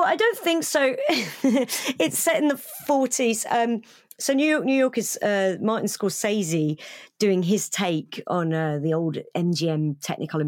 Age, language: 40-59, English